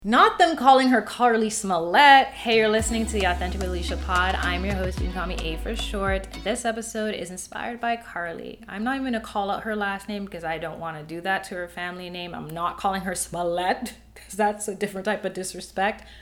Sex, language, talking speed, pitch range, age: female, English, 215 wpm, 175-230 Hz, 20-39